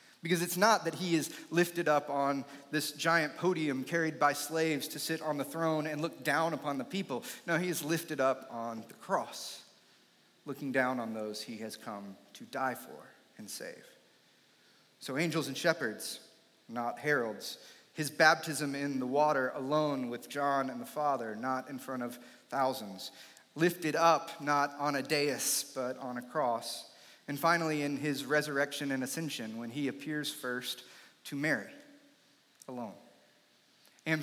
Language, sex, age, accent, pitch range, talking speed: English, male, 30-49, American, 135-165 Hz, 165 wpm